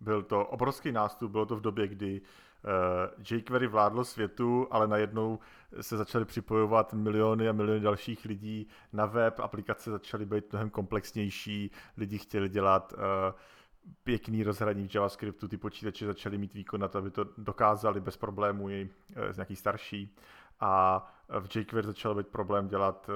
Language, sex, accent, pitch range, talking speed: Czech, male, native, 100-115 Hz, 155 wpm